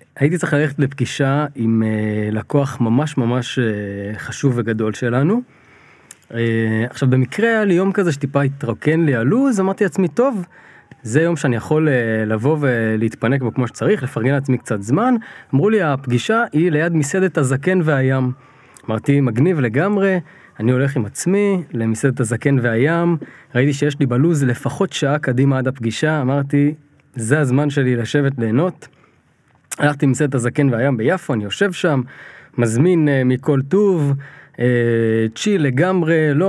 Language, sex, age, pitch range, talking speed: Hebrew, male, 20-39, 125-170 Hz, 145 wpm